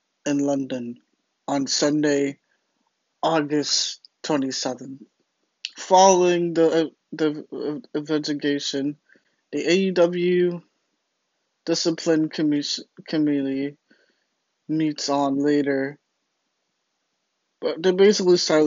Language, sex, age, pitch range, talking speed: English, male, 20-39, 140-165 Hz, 70 wpm